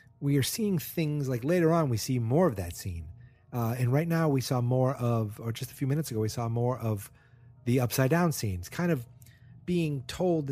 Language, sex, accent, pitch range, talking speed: English, male, American, 115-140 Hz, 215 wpm